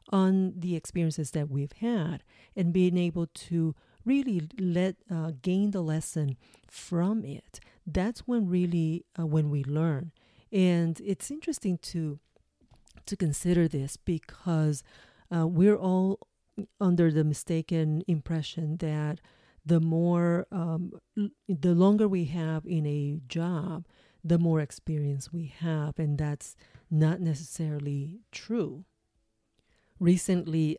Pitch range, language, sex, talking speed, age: 155-185 Hz, English, female, 125 wpm, 40-59